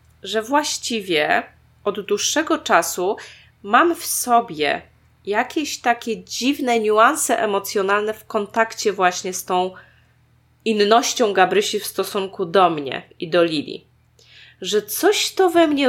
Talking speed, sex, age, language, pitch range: 120 wpm, female, 20-39, Polish, 175-235 Hz